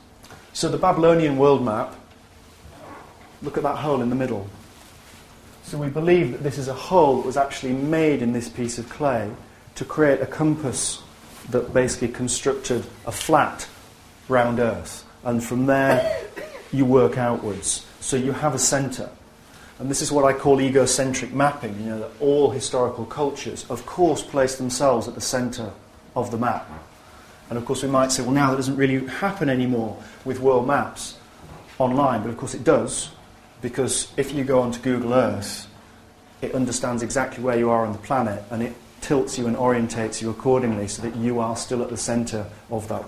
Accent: British